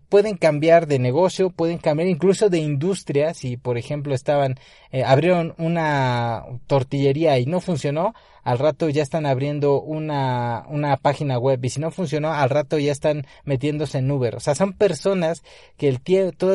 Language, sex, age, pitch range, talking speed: Spanish, male, 30-49, 135-170 Hz, 175 wpm